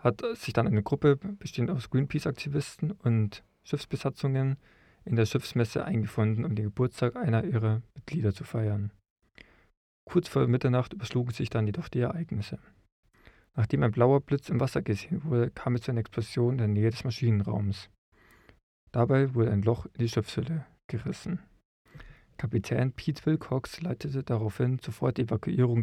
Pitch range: 105-135 Hz